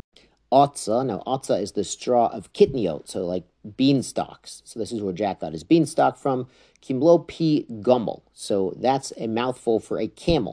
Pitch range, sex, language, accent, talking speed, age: 105-135 Hz, male, English, American, 170 wpm, 40-59